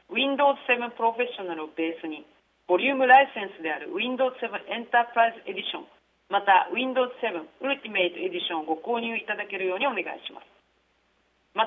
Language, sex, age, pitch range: Japanese, female, 40-59, 185-255 Hz